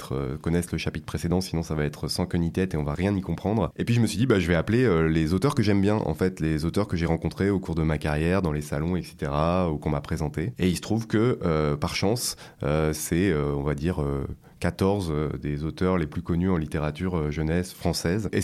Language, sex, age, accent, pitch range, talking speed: French, male, 30-49, French, 80-100 Hz, 260 wpm